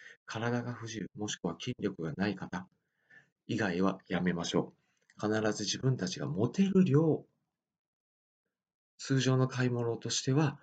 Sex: male